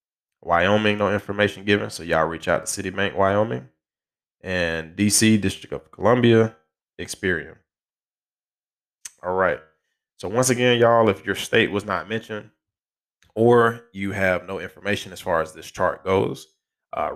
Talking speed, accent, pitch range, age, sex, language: 145 wpm, American, 95-105 Hz, 20-39, male, English